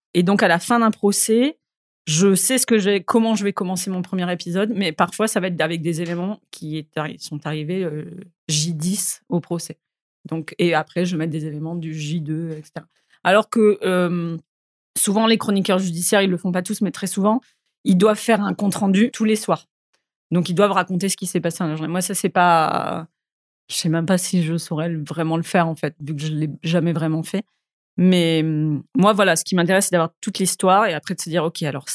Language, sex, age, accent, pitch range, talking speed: French, female, 30-49, French, 165-205 Hz, 225 wpm